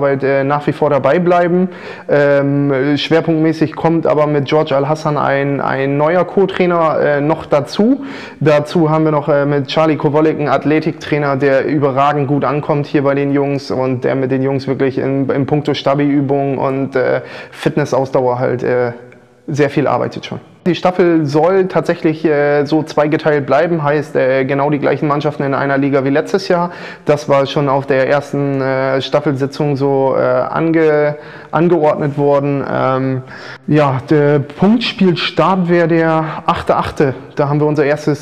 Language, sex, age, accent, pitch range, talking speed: German, male, 20-39, German, 135-155 Hz, 160 wpm